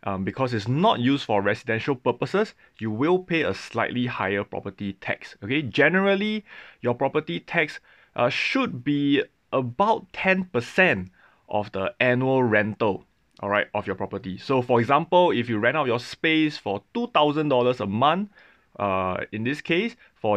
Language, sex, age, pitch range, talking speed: English, male, 20-39, 105-155 Hz, 150 wpm